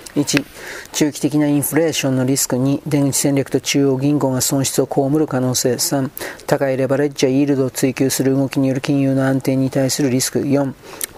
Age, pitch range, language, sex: 40-59, 130-145 Hz, Japanese, male